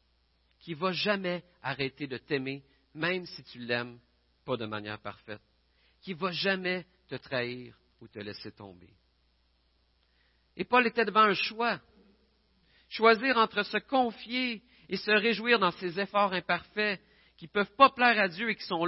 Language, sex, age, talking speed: French, male, 50-69, 155 wpm